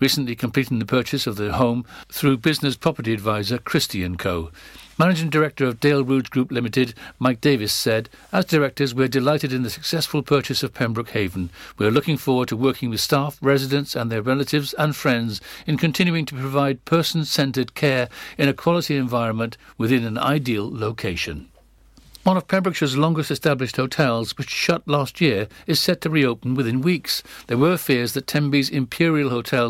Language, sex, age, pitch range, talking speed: English, male, 60-79, 120-145 Hz, 170 wpm